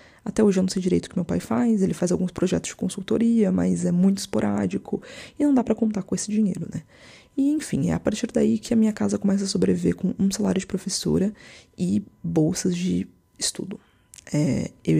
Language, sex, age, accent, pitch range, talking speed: Portuguese, female, 20-39, Brazilian, 175-215 Hz, 215 wpm